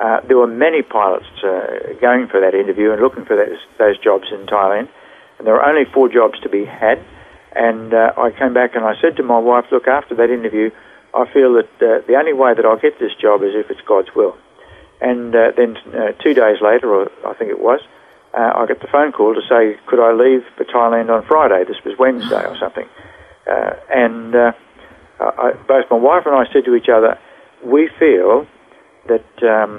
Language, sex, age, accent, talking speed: English, male, 60-79, Australian, 215 wpm